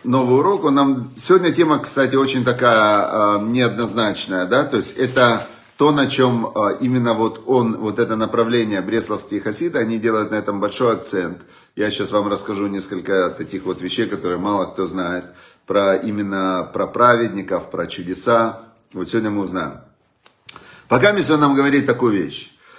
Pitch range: 105-145 Hz